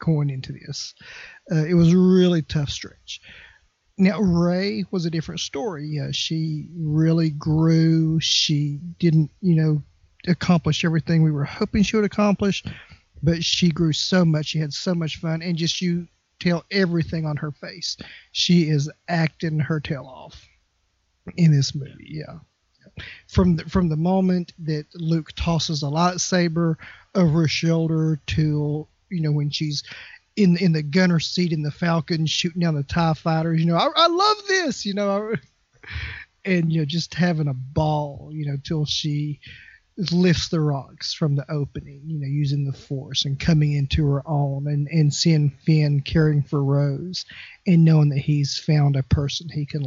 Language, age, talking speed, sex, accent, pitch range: English, 40-59, 170 wpm, male, American, 145-170 Hz